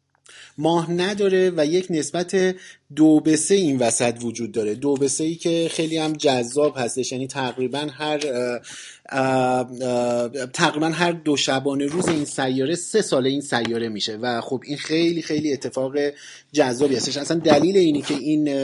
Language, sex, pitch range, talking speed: Persian, male, 125-160 Hz, 150 wpm